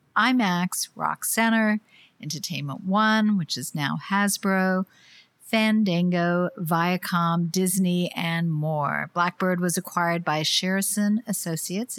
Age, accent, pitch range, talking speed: 50-69, American, 160-215 Hz, 100 wpm